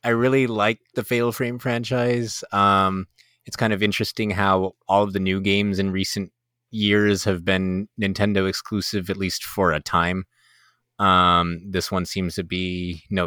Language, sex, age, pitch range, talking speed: English, male, 20-39, 90-110 Hz, 165 wpm